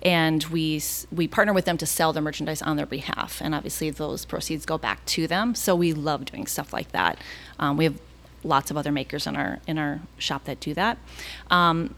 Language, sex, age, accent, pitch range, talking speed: English, female, 30-49, American, 160-205 Hz, 220 wpm